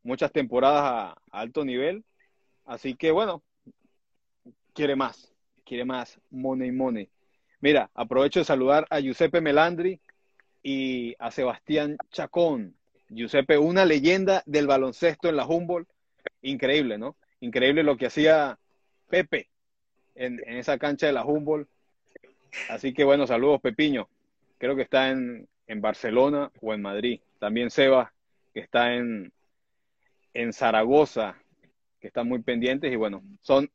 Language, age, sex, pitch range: Spanish, 30-49, male, 125-175 Hz